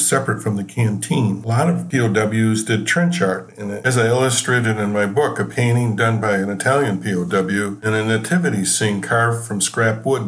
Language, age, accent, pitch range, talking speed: English, 60-79, American, 105-130 Hz, 200 wpm